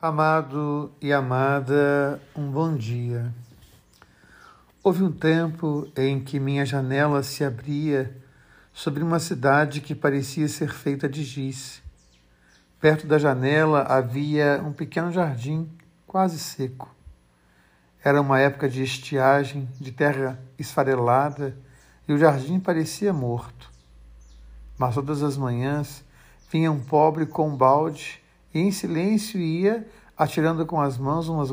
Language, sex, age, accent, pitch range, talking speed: Portuguese, male, 50-69, Brazilian, 130-160 Hz, 120 wpm